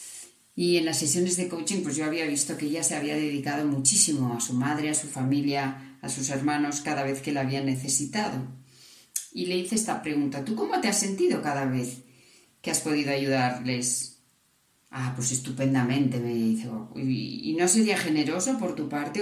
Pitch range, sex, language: 130-175 Hz, female, Spanish